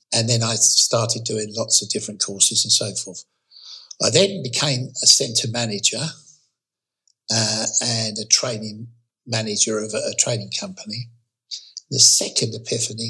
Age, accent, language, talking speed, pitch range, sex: 60-79, British, English, 140 wpm, 110-125 Hz, male